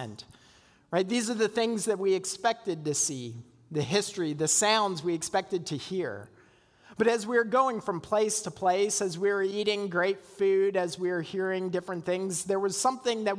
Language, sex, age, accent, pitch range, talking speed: English, male, 40-59, American, 160-205 Hz, 195 wpm